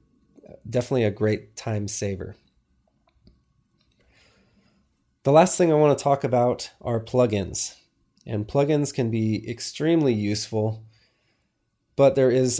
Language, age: English, 30-49